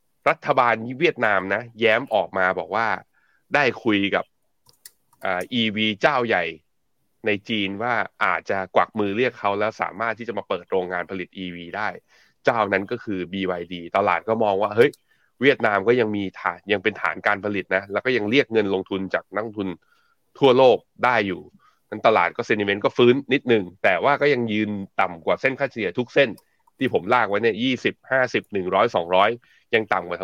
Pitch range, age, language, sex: 100-125 Hz, 20-39, Thai, male